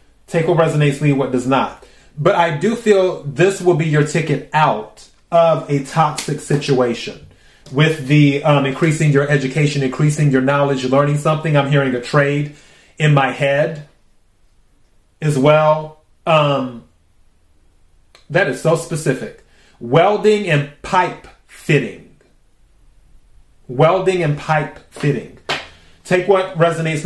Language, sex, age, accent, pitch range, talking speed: English, male, 30-49, American, 140-175 Hz, 125 wpm